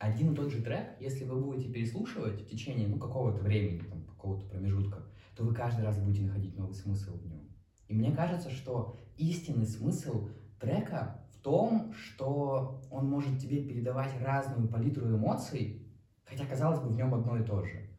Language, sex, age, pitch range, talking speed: Russian, male, 20-39, 105-130 Hz, 175 wpm